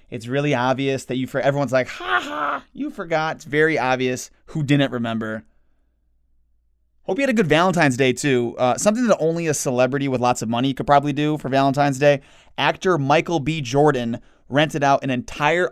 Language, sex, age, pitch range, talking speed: English, male, 20-39, 115-150 Hz, 190 wpm